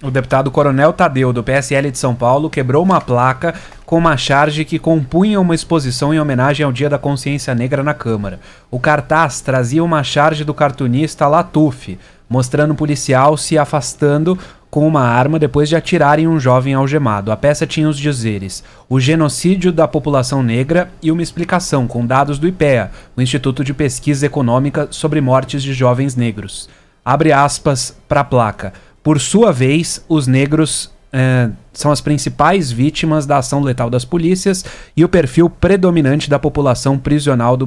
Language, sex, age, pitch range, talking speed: English, male, 20-39, 125-155 Hz, 170 wpm